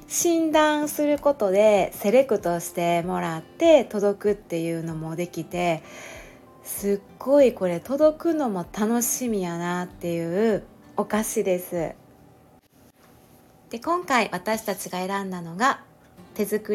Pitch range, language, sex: 185-270 Hz, Japanese, female